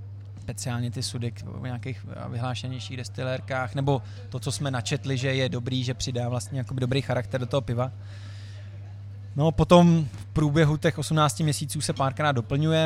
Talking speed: 155 wpm